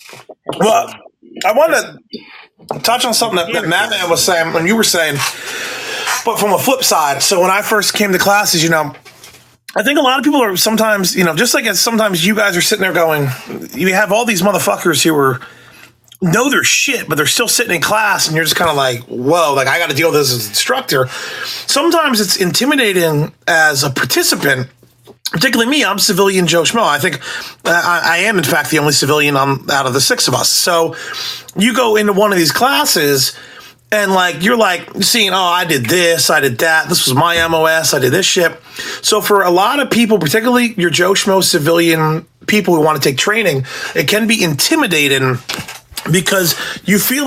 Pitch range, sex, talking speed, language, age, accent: 160-215 Hz, male, 205 wpm, English, 30-49, American